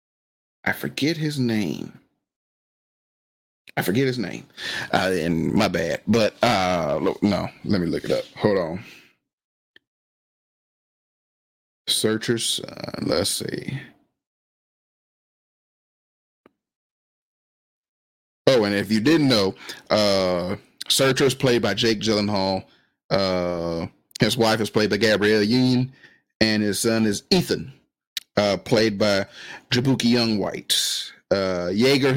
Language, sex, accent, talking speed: English, male, American, 110 wpm